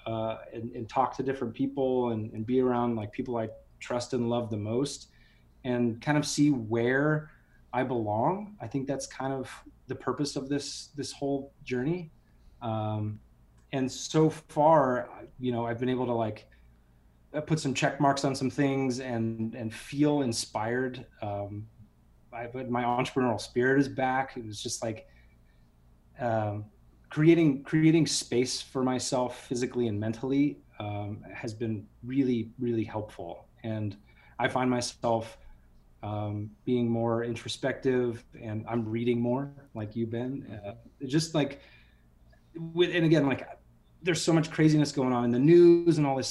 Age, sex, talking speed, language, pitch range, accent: 30-49, male, 155 wpm, English, 110-135 Hz, American